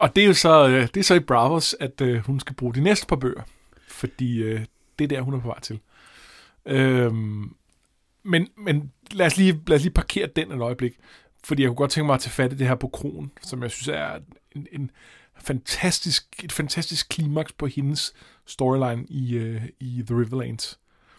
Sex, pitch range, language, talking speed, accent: male, 125-155 Hz, Danish, 200 wpm, native